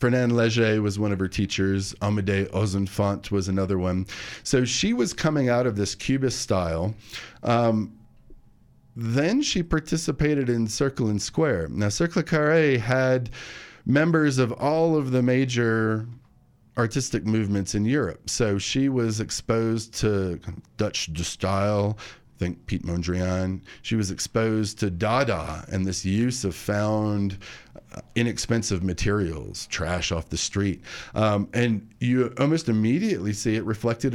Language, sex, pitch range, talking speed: English, male, 100-125 Hz, 140 wpm